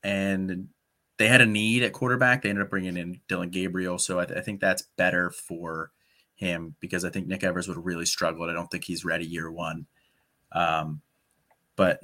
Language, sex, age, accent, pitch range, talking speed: English, male, 30-49, American, 95-120 Hz, 205 wpm